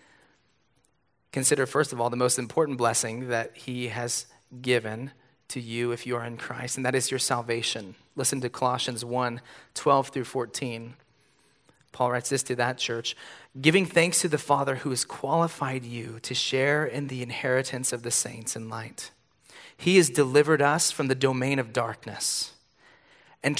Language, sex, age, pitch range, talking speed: English, male, 30-49, 120-140 Hz, 170 wpm